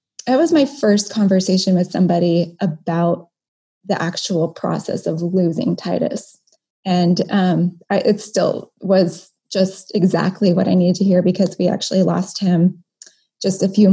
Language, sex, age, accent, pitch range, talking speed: English, female, 20-39, American, 185-225 Hz, 150 wpm